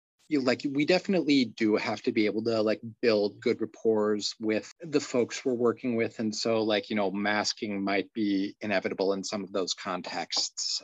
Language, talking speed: English, 185 wpm